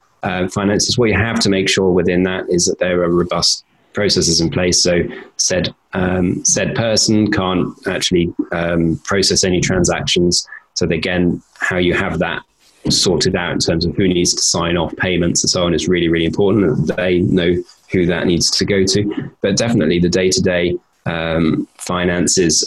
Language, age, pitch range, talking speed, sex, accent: English, 20-39, 90-100 Hz, 180 wpm, male, British